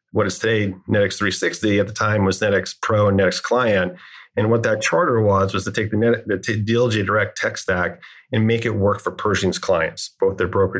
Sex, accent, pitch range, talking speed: male, American, 95-115 Hz, 210 wpm